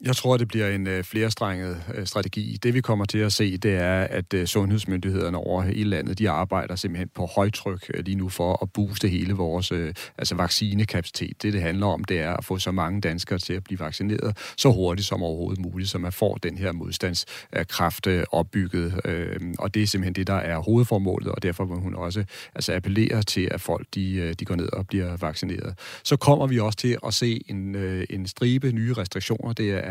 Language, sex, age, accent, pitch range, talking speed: Danish, male, 40-59, native, 90-110 Hz, 200 wpm